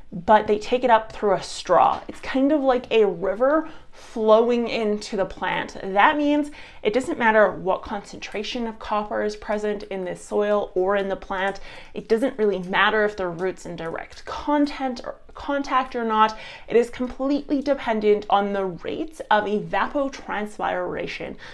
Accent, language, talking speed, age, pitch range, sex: American, English, 165 wpm, 20-39, 200-260 Hz, female